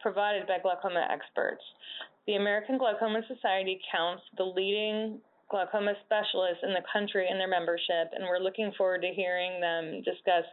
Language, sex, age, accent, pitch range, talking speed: English, female, 20-39, American, 175-220 Hz, 155 wpm